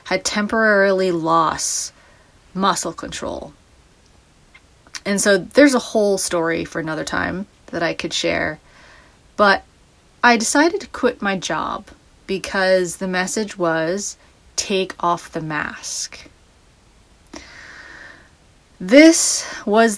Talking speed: 105 wpm